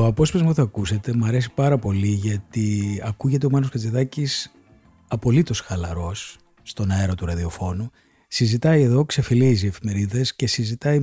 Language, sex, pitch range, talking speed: Greek, male, 100-135 Hz, 145 wpm